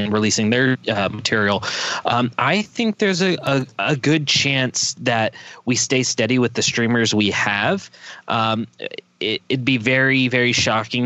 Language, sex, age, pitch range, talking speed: English, male, 20-39, 110-130 Hz, 150 wpm